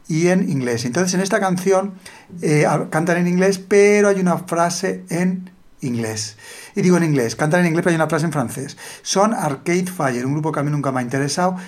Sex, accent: male, Spanish